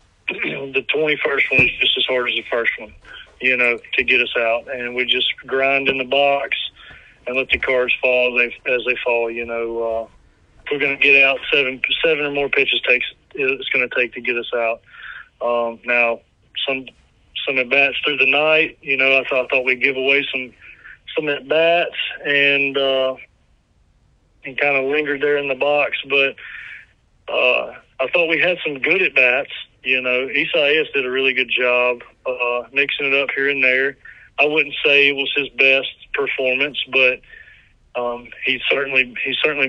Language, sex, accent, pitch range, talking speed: English, male, American, 125-140 Hz, 190 wpm